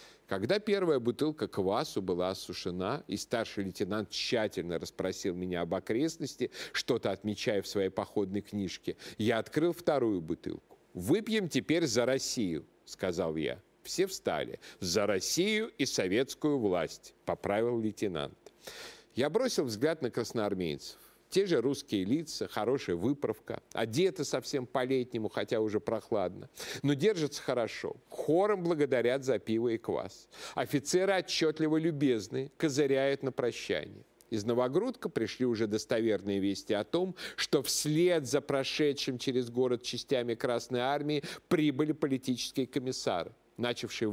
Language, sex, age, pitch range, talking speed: Russian, male, 50-69, 110-150 Hz, 125 wpm